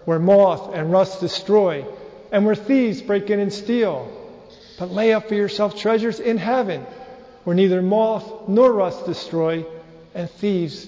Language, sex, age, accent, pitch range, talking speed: English, male, 50-69, American, 155-205 Hz, 155 wpm